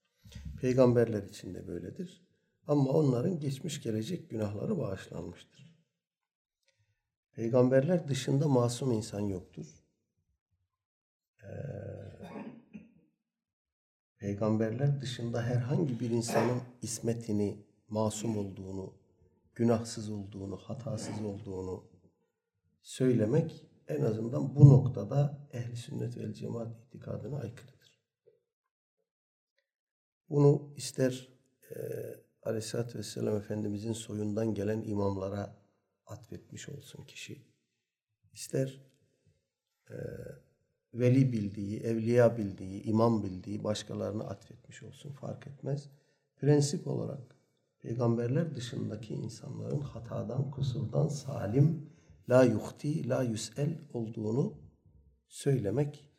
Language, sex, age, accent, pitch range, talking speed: Turkish, male, 60-79, native, 105-140 Hz, 85 wpm